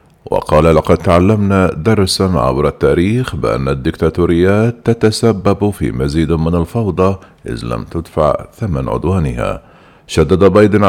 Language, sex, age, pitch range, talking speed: Arabic, male, 50-69, 80-95 Hz, 110 wpm